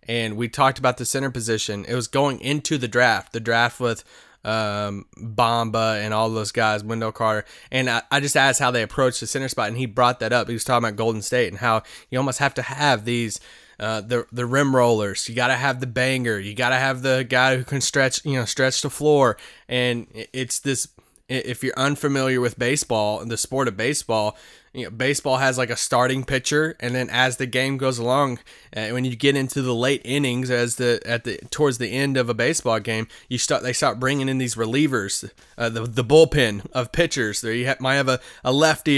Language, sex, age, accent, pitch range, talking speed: English, male, 20-39, American, 120-140 Hz, 230 wpm